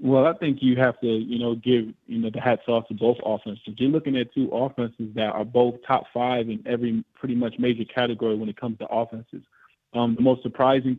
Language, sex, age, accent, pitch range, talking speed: English, male, 20-39, American, 115-135 Hz, 230 wpm